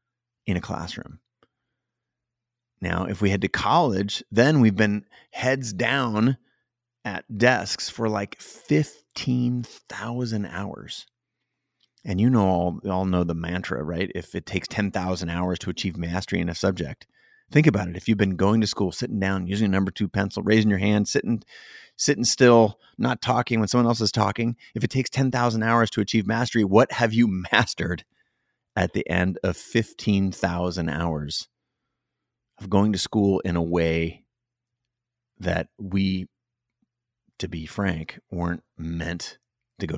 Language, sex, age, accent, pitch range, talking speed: English, male, 30-49, American, 95-120 Hz, 155 wpm